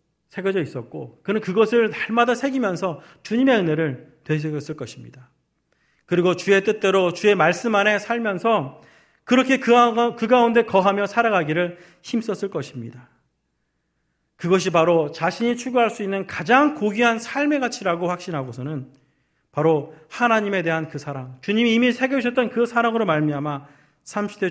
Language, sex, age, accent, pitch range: Korean, male, 40-59, native, 145-215 Hz